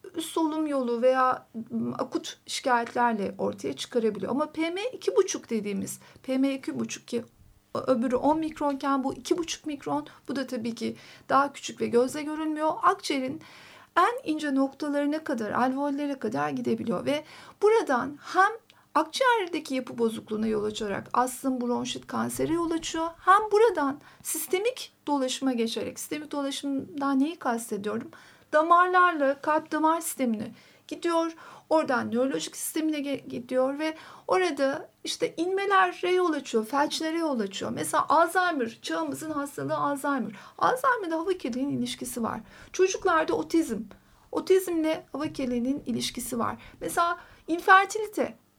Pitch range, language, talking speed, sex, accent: 255-335 Hz, Turkish, 115 wpm, female, native